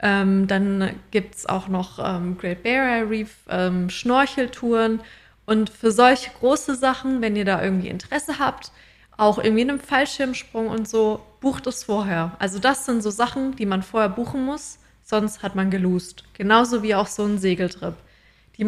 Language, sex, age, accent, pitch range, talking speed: German, female, 20-39, German, 195-240 Hz, 165 wpm